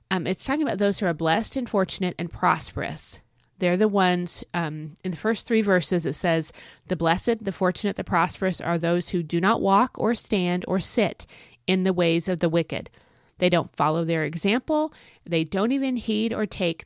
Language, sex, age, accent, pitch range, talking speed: English, female, 30-49, American, 160-210 Hz, 200 wpm